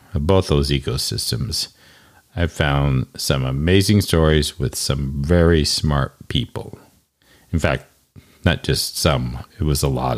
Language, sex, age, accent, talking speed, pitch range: English, male, 50-69, American, 130 wpm, 70-95 Hz